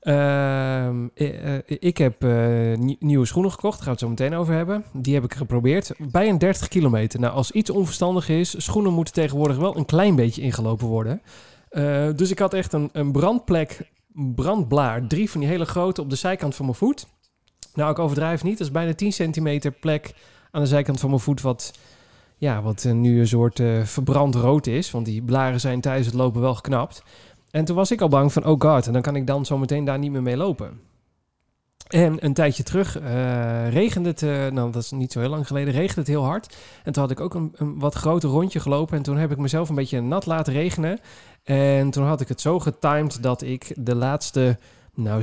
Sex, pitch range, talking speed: male, 125-160 Hz, 225 wpm